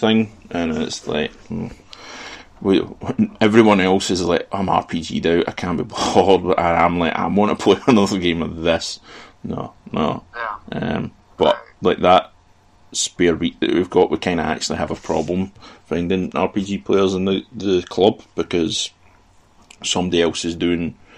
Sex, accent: male, British